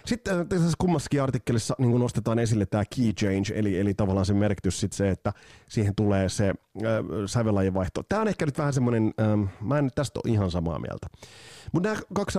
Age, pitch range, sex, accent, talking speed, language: 30-49, 95-130 Hz, male, native, 200 wpm, Finnish